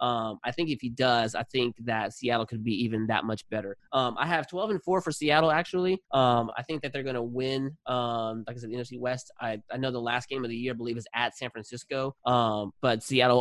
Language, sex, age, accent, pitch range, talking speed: English, male, 20-39, American, 120-150 Hz, 260 wpm